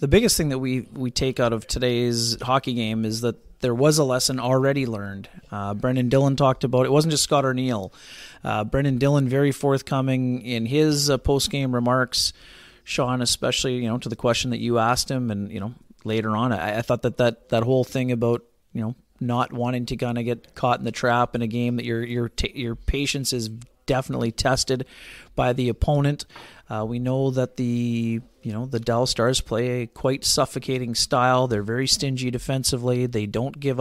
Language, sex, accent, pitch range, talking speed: English, male, American, 115-130 Hz, 205 wpm